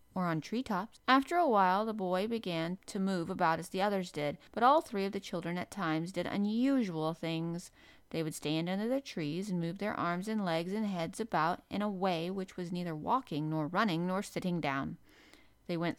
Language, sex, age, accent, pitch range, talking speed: English, female, 30-49, American, 170-205 Hz, 210 wpm